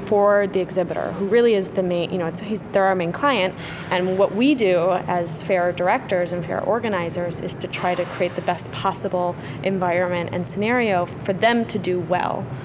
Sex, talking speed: female, 185 wpm